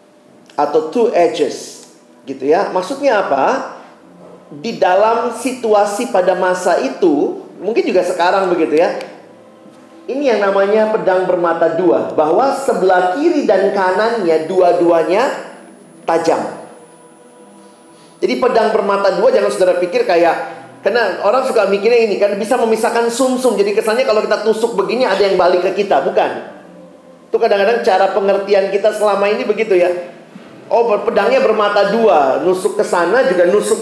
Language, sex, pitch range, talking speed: Indonesian, male, 185-245 Hz, 135 wpm